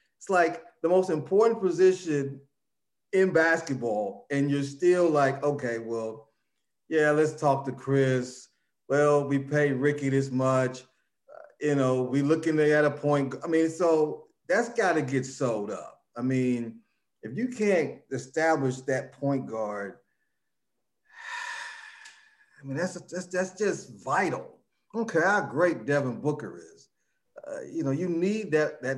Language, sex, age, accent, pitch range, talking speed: English, male, 40-59, American, 130-175 Hz, 145 wpm